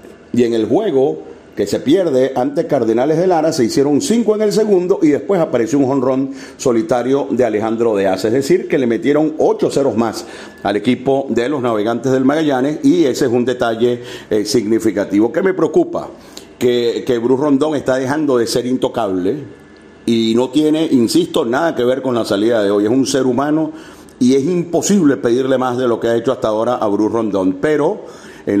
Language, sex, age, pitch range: Spanish, male, 40-59, 115-150 Hz